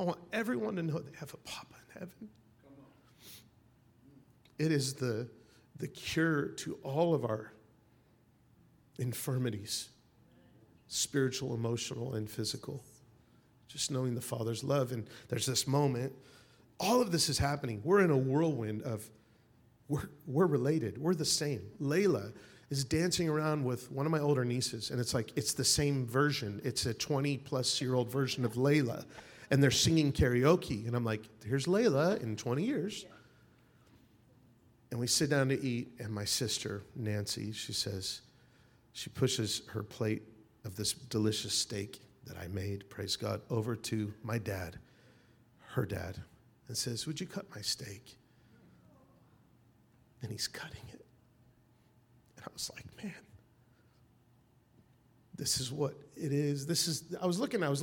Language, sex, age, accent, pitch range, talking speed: English, male, 40-59, American, 115-140 Hz, 155 wpm